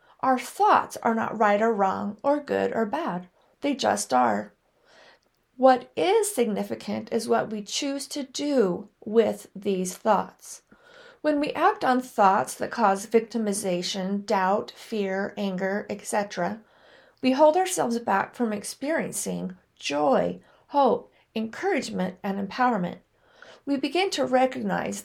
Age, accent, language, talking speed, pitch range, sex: 50-69, American, English, 125 wpm, 205-275 Hz, female